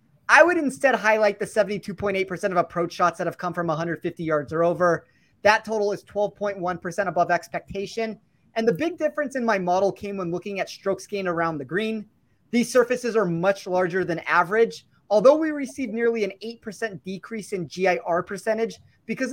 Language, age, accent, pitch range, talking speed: English, 30-49, American, 180-220 Hz, 175 wpm